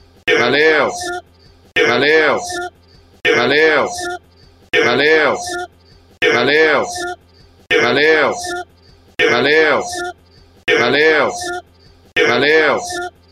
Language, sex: Portuguese, male